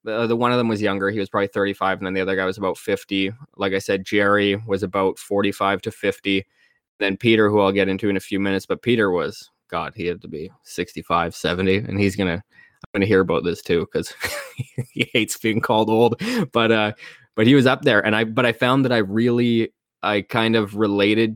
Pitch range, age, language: 100-115 Hz, 20-39, English